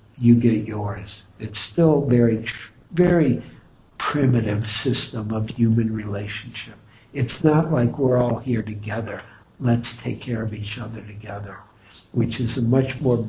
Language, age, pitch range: English, 60-79, 110-125 Hz